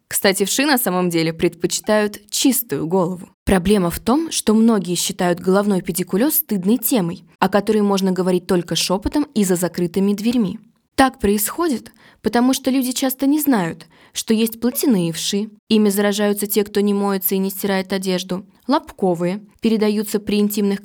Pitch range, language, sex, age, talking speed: 180-230 Hz, Russian, female, 20-39, 155 wpm